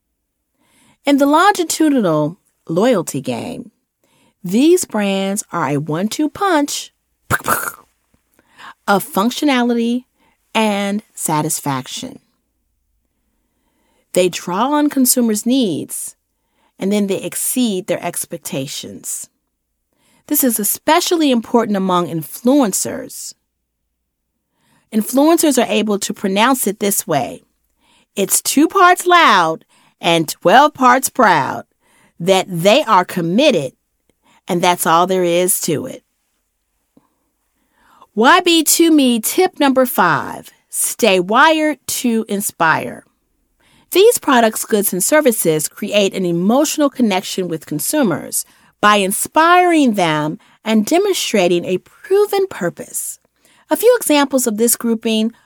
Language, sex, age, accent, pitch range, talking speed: English, female, 40-59, American, 180-285 Hz, 100 wpm